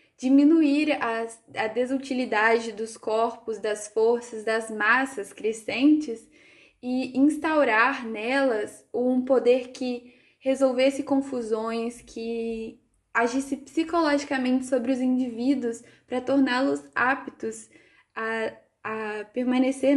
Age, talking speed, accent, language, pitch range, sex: 10-29, 90 wpm, Brazilian, Portuguese, 225-260 Hz, female